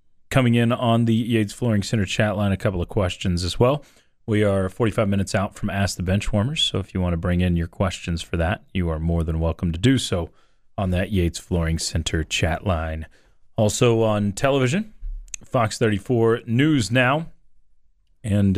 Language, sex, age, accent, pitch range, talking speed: English, male, 30-49, American, 90-115 Hz, 185 wpm